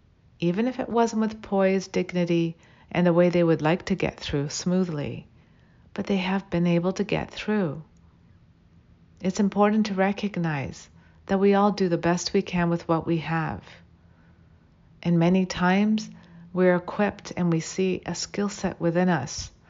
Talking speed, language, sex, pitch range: 165 wpm, English, female, 155-185 Hz